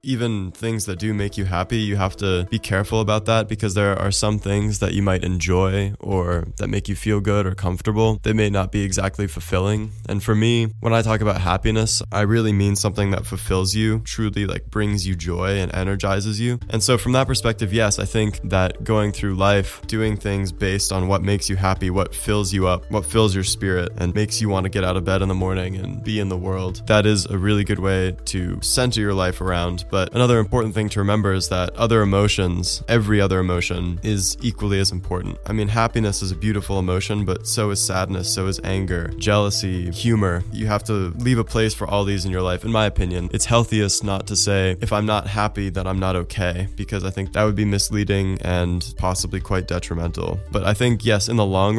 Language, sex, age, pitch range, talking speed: English, male, 20-39, 95-110 Hz, 225 wpm